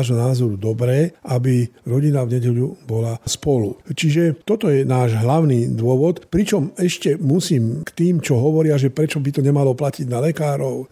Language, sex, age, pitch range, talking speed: Slovak, male, 50-69, 125-170 Hz, 165 wpm